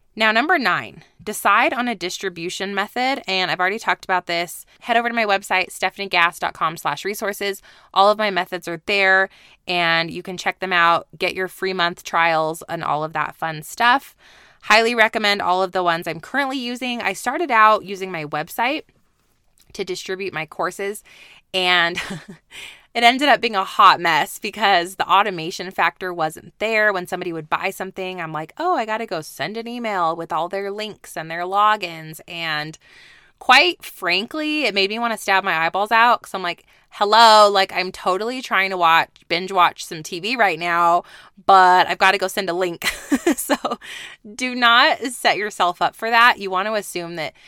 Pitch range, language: 175-215 Hz, English